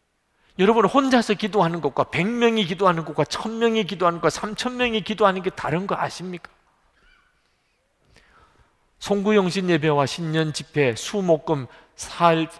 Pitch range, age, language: 155-215 Hz, 40-59, Korean